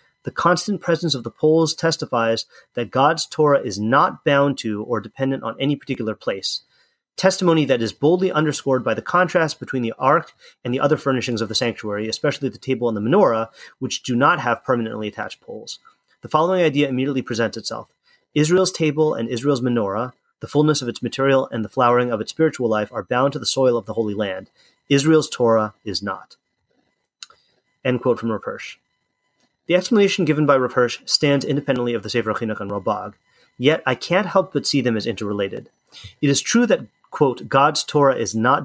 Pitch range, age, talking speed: 115-150 Hz, 30-49, 190 wpm